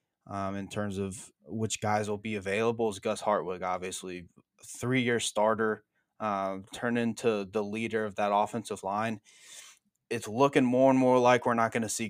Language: English